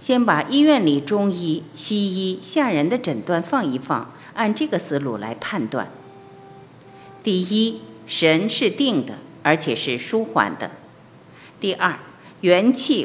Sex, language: female, Chinese